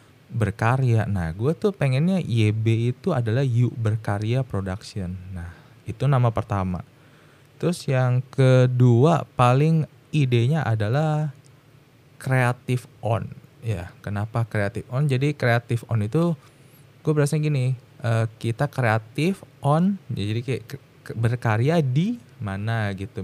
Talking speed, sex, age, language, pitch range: 110 wpm, male, 20-39, Indonesian, 110-140 Hz